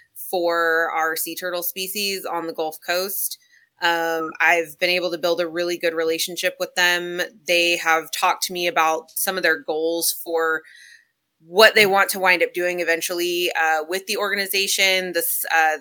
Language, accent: English, American